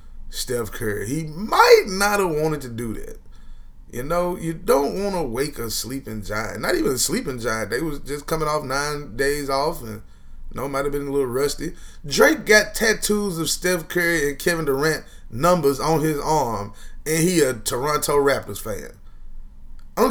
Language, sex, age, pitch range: English, male, 20-39, 115-170 Hz